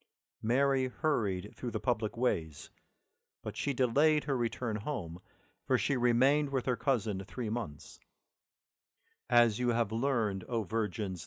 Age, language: 50-69, English